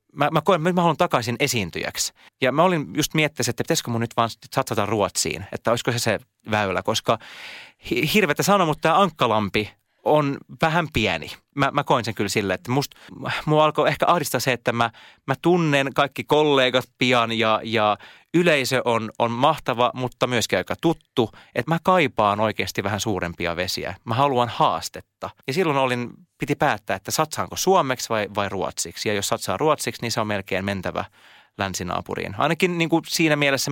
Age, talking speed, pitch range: 30-49, 175 wpm, 110-150 Hz